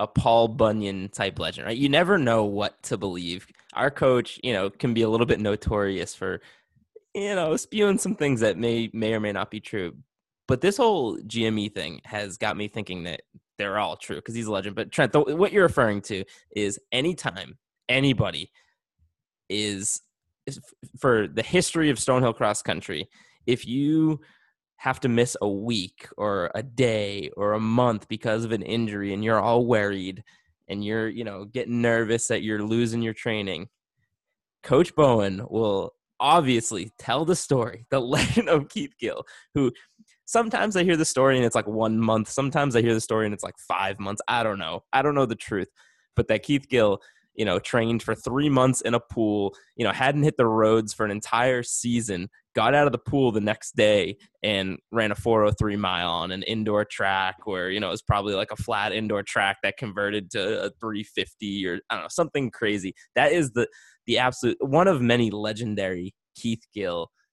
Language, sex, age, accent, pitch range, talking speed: English, male, 20-39, American, 105-130 Hz, 195 wpm